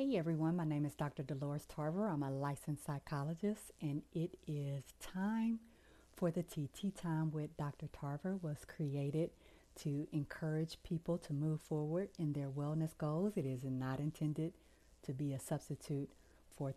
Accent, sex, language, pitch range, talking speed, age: American, female, English, 135-155 Hz, 155 wpm, 30-49